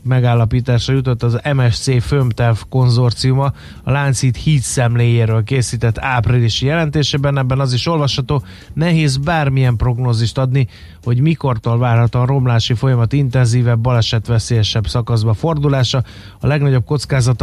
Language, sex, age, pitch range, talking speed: Hungarian, male, 30-49, 115-135 Hz, 120 wpm